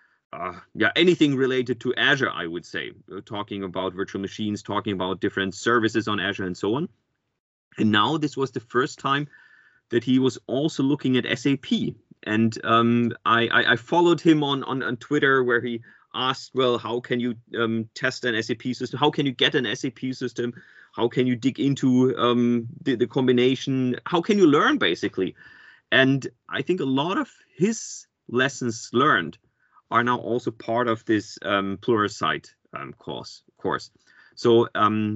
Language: English